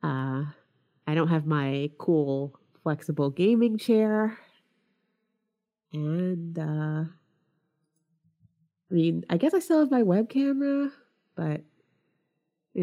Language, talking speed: English, 110 wpm